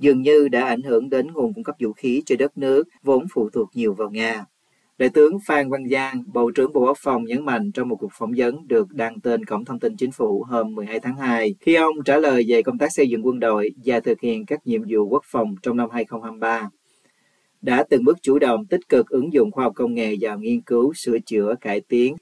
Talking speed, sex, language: 245 wpm, male, Vietnamese